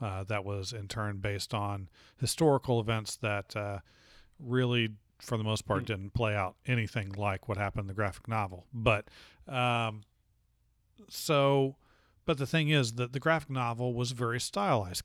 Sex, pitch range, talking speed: male, 105-130 Hz, 165 wpm